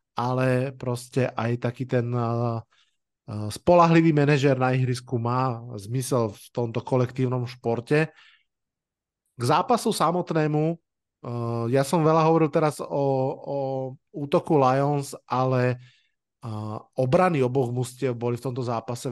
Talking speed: 120 wpm